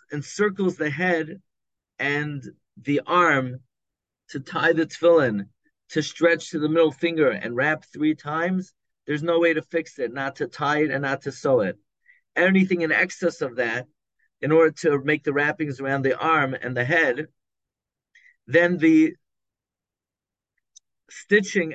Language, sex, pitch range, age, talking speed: English, male, 140-175 Hz, 40-59, 150 wpm